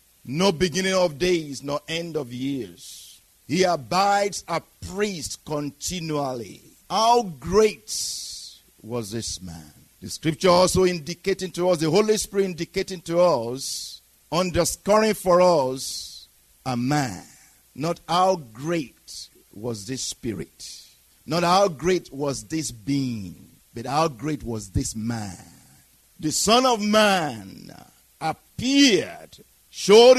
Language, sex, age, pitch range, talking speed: English, male, 50-69, 130-180 Hz, 115 wpm